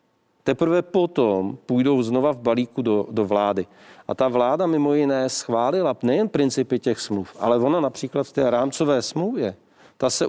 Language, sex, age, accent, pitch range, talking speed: Czech, male, 40-59, native, 120-150 Hz, 165 wpm